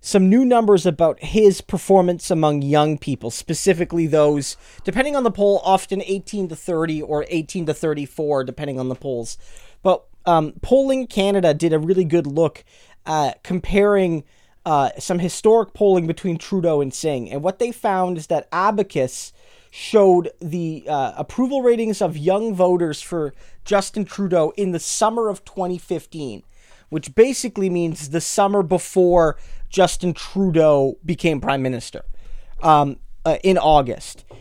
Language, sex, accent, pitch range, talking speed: English, male, American, 155-200 Hz, 145 wpm